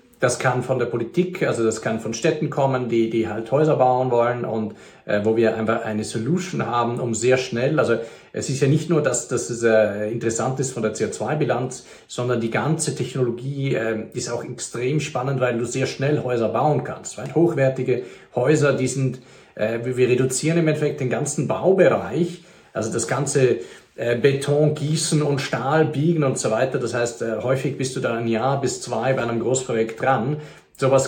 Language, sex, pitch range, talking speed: German, male, 120-145 Hz, 190 wpm